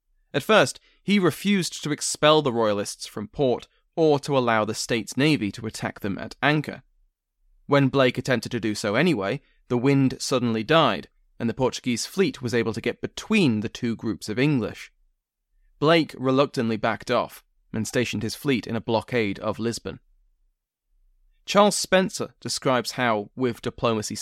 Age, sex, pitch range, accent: 20-39, male, 115-145 Hz, British